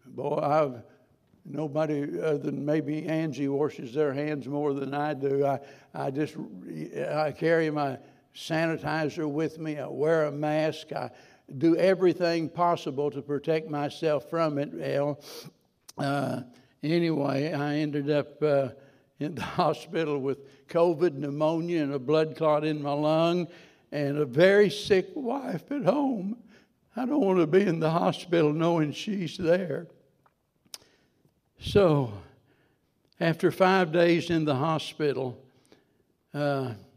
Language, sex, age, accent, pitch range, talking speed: English, male, 60-79, American, 140-160 Hz, 135 wpm